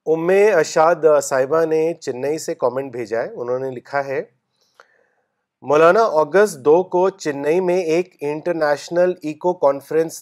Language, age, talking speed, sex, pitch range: Urdu, 40-59, 130 wpm, male, 155-190 Hz